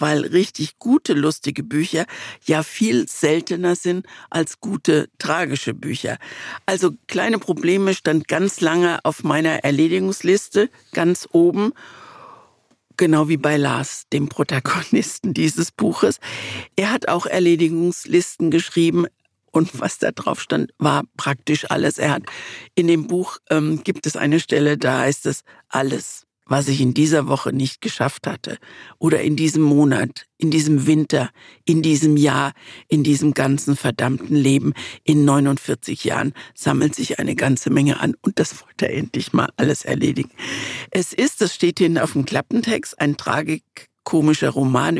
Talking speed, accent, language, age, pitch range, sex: 150 wpm, German, German, 60-79, 145-175 Hz, female